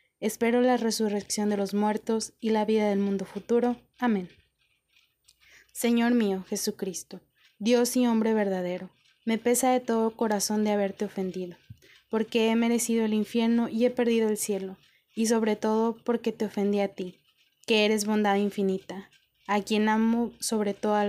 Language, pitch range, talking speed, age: Spanish, 205-235 Hz, 155 wpm, 20-39